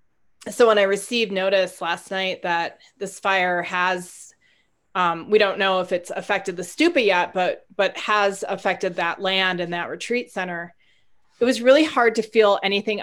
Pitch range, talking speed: 180-235 Hz, 175 wpm